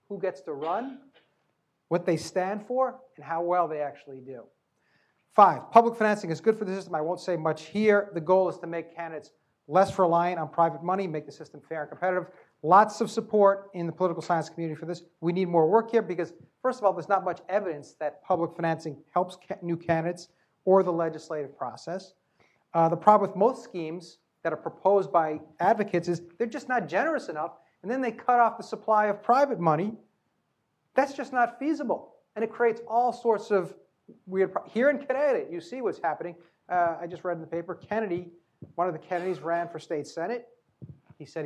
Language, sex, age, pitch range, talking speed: English, male, 30-49, 160-210 Hz, 205 wpm